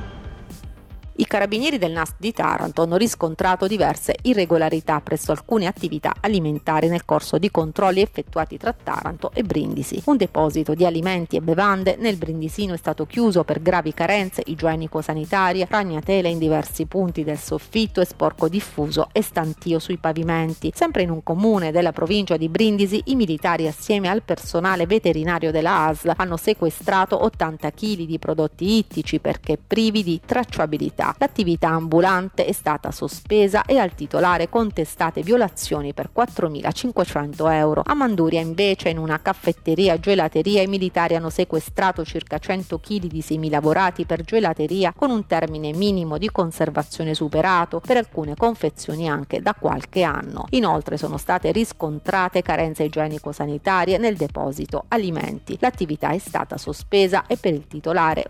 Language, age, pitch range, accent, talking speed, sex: Italian, 30-49, 160-200 Hz, native, 145 wpm, female